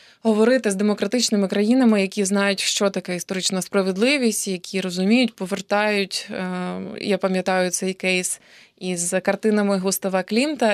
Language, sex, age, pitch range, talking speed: Ukrainian, female, 20-39, 185-225 Hz, 115 wpm